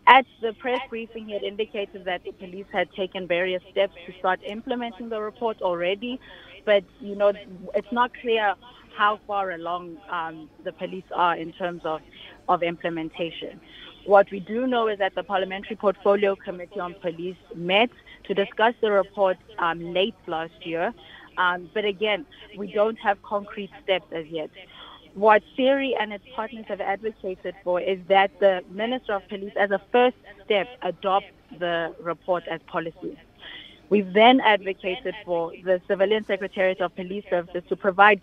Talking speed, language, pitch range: 160 wpm, English, 180-210 Hz